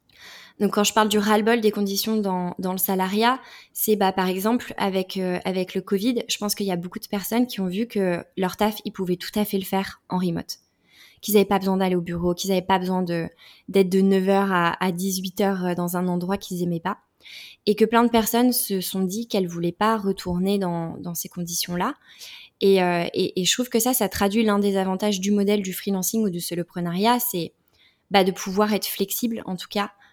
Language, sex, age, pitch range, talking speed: French, female, 20-39, 185-220 Hz, 225 wpm